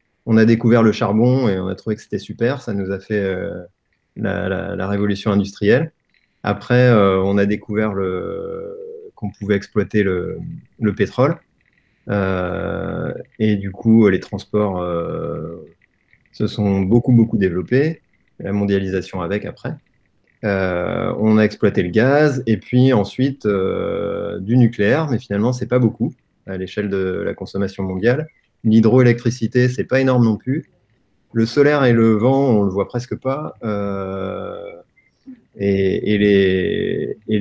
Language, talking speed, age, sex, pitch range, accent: French, 150 wpm, 30-49, male, 100-125 Hz, French